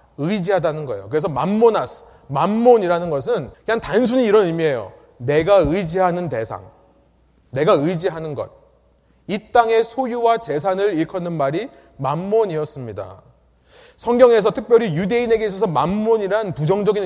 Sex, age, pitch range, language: male, 30-49, 155-230 Hz, Korean